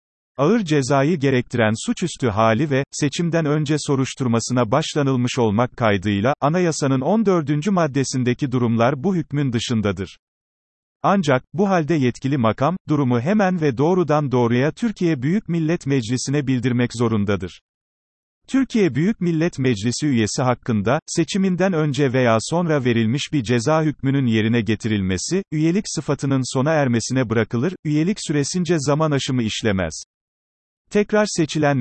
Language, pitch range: Turkish, 120-160 Hz